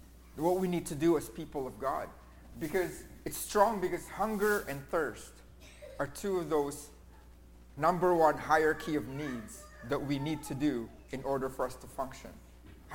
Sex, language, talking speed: male, English, 170 wpm